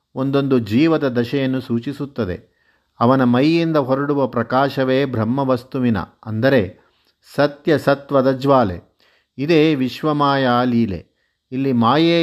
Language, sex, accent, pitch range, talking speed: Kannada, male, native, 120-140 Hz, 85 wpm